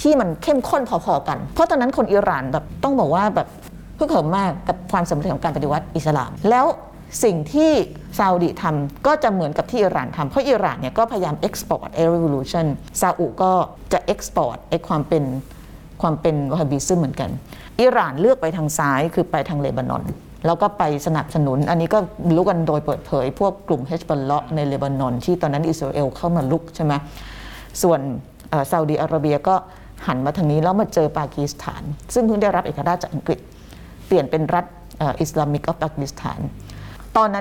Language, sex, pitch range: Thai, female, 145-185 Hz